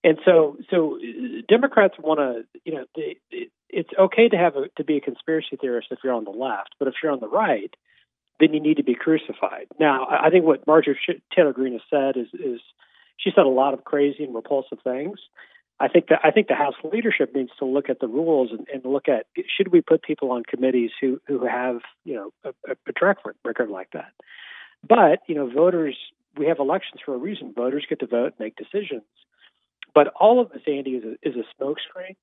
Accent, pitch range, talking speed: American, 125-170 Hz, 215 wpm